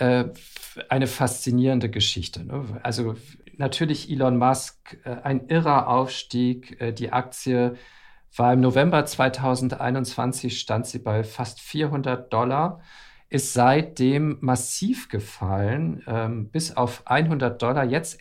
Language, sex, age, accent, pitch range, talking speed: German, male, 50-69, German, 125-160 Hz, 100 wpm